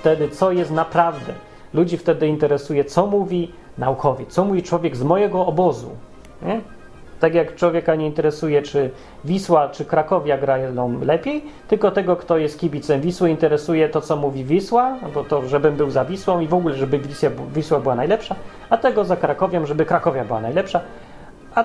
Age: 30-49